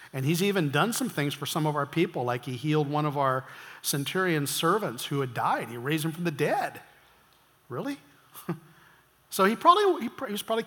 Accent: American